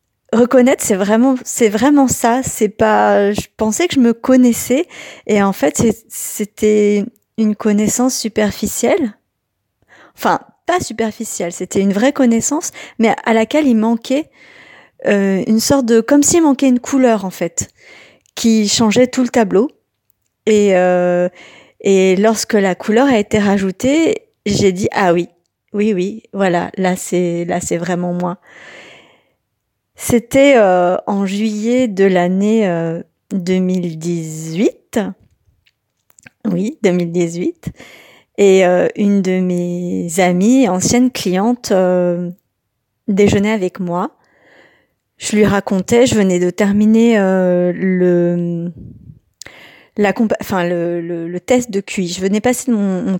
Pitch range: 180-235 Hz